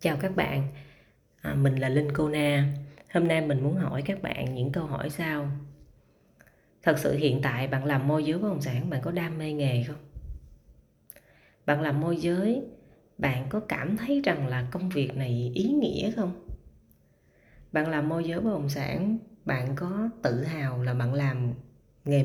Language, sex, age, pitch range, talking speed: Vietnamese, female, 20-39, 130-170 Hz, 180 wpm